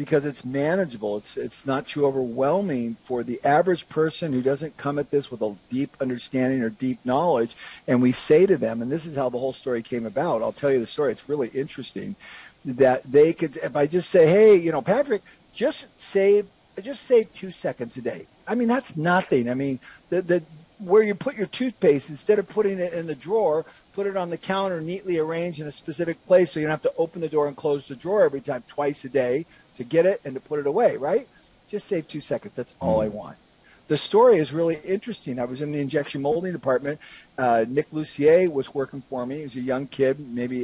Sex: male